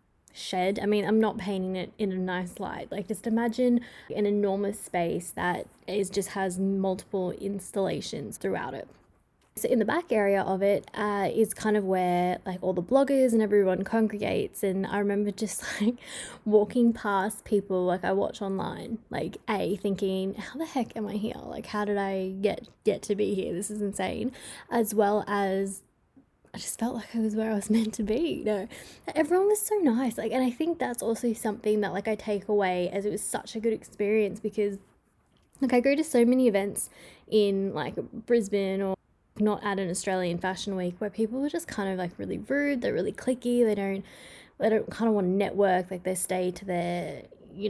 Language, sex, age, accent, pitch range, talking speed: English, female, 10-29, Australian, 195-225 Hz, 205 wpm